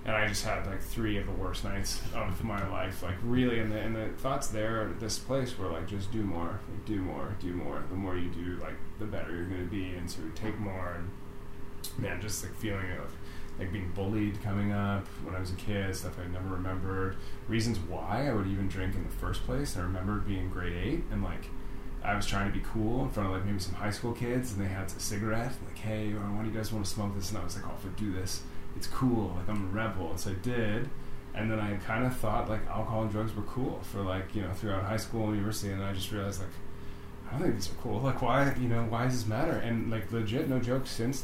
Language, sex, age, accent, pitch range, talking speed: English, male, 20-39, American, 95-110 Hz, 260 wpm